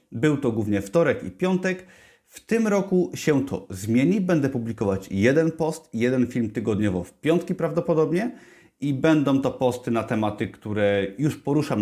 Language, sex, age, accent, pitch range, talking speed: Polish, male, 30-49, native, 110-160 Hz, 155 wpm